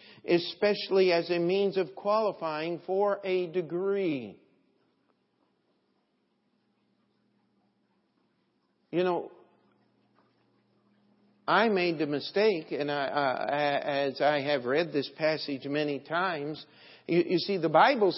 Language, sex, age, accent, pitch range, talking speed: English, male, 50-69, American, 170-245 Hz, 100 wpm